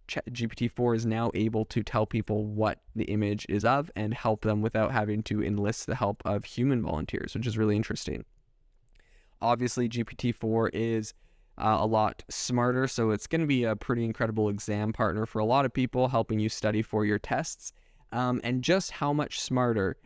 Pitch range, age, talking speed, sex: 105-125 Hz, 20-39, 185 wpm, male